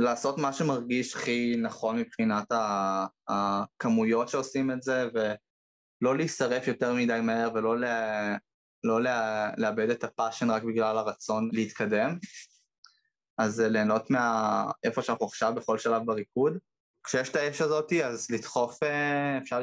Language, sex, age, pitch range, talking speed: Hebrew, male, 20-39, 110-135 Hz, 130 wpm